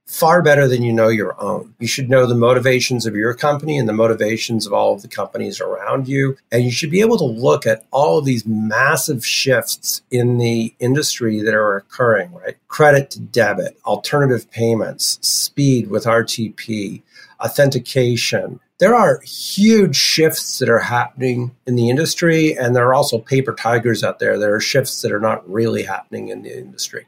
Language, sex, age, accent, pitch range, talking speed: English, male, 50-69, American, 115-140 Hz, 185 wpm